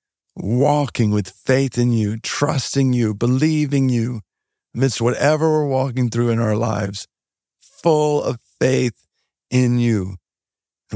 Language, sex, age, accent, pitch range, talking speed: English, male, 50-69, American, 105-135 Hz, 125 wpm